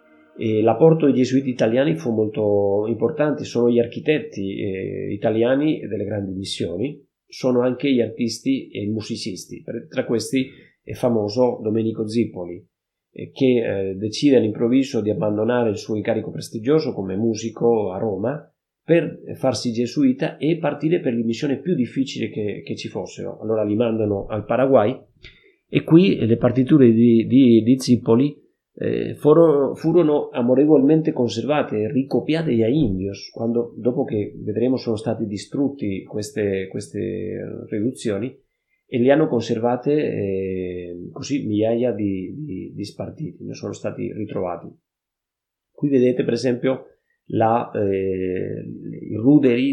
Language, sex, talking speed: Italian, male, 135 wpm